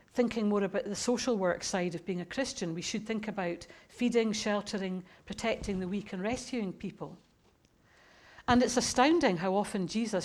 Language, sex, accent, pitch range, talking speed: English, female, British, 185-220 Hz, 170 wpm